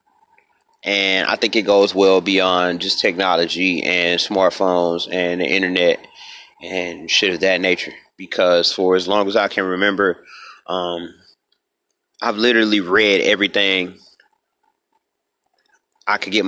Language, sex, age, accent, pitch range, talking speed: English, male, 30-49, American, 90-105 Hz, 125 wpm